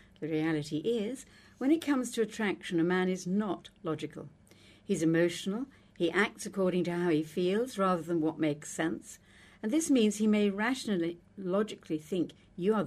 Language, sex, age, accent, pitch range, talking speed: English, female, 60-79, British, 155-215 Hz, 175 wpm